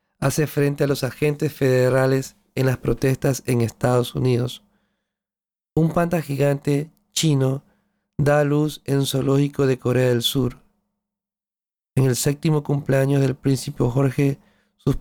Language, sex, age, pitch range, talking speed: Spanish, male, 40-59, 130-145 Hz, 130 wpm